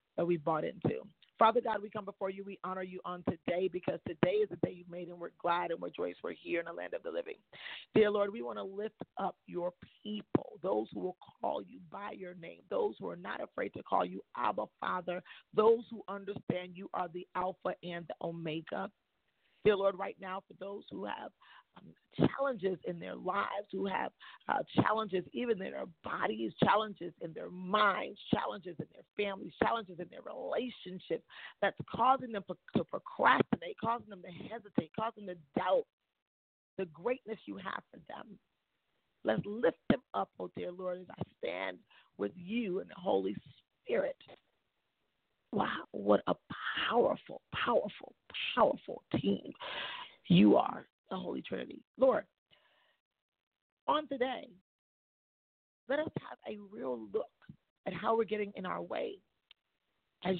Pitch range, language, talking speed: 180-220 Hz, English, 170 wpm